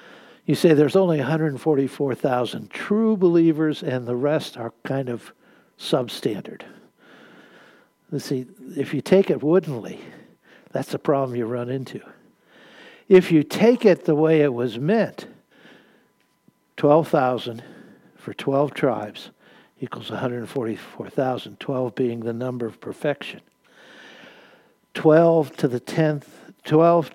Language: English